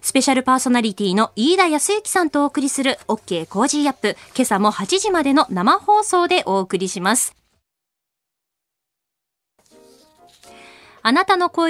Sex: female